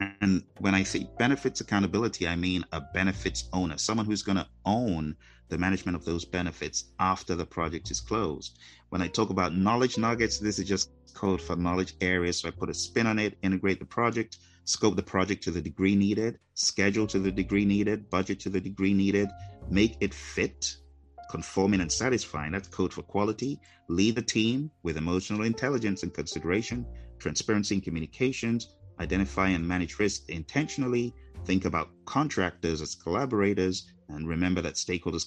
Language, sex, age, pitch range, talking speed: English, male, 30-49, 85-105 Hz, 170 wpm